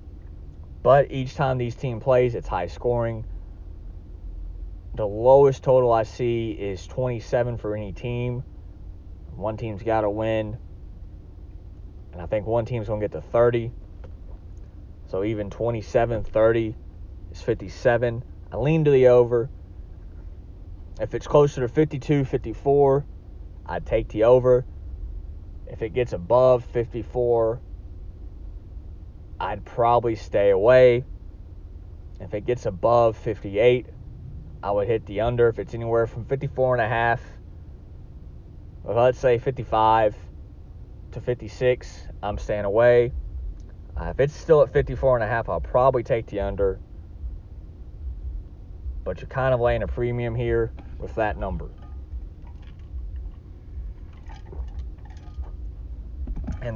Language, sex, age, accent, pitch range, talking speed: English, male, 30-49, American, 80-120 Hz, 120 wpm